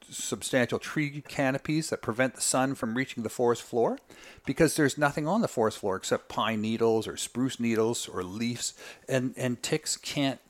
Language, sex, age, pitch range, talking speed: English, male, 40-59, 120-155 Hz, 175 wpm